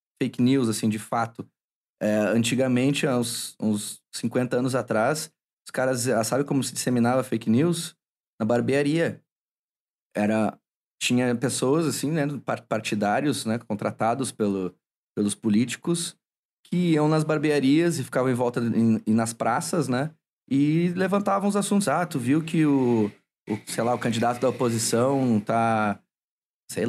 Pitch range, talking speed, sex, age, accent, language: 110-150 Hz, 140 wpm, male, 20-39, Brazilian, Portuguese